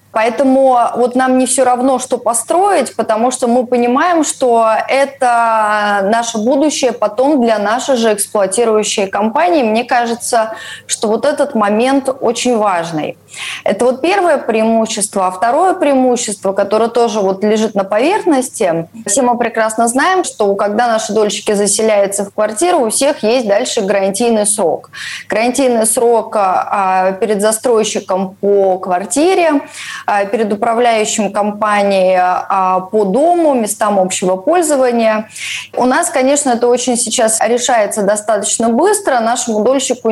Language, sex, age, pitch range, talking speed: Russian, female, 20-39, 210-255 Hz, 125 wpm